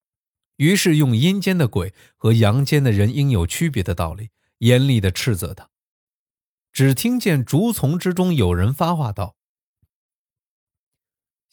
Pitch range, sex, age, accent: 100-140 Hz, male, 20-39, native